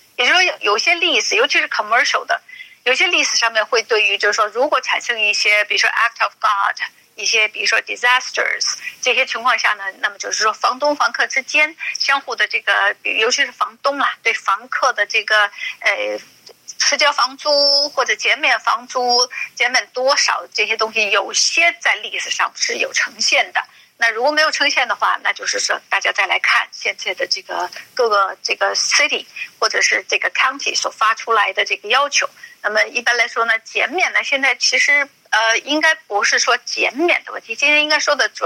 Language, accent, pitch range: Chinese, native, 230-315 Hz